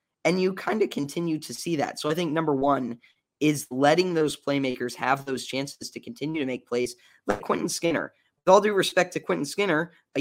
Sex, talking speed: male, 210 wpm